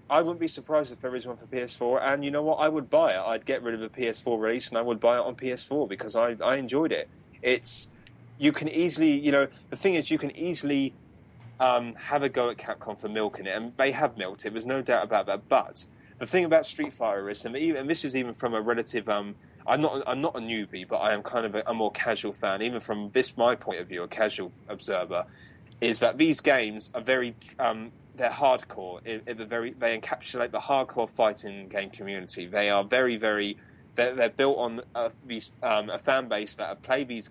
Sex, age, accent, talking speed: male, 30-49, British, 240 wpm